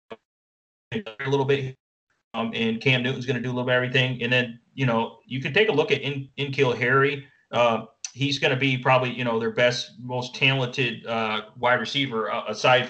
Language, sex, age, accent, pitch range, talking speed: English, male, 30-49, American, 120-140 Hz, 215 wpm